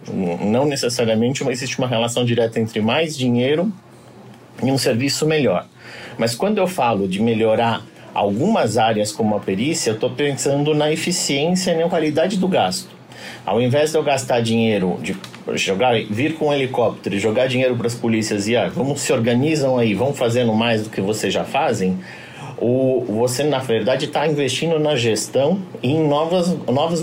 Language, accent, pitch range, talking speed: Portuguese, Brazilian, 115-155 Hz, 175 wpm